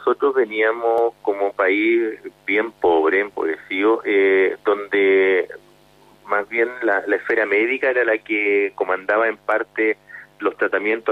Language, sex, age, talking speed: Spanish, male, 40-59, 125 wpm